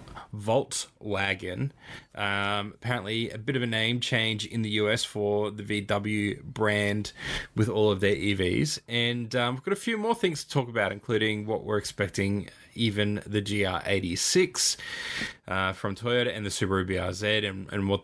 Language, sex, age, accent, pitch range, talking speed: English, male, 20-39, Australian, 100-120 Hz, 165 wpm